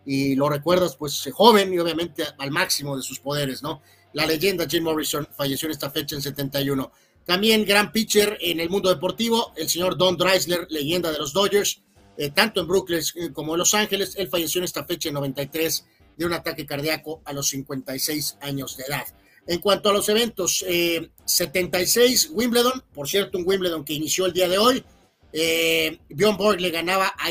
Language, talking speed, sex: Spanish, 190 wpm, male